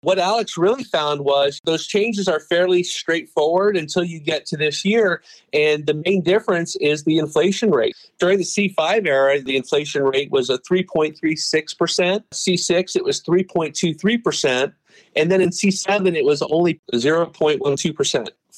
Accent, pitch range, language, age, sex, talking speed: American, 135-185 Hz, English, 40-59, male, 150 wpm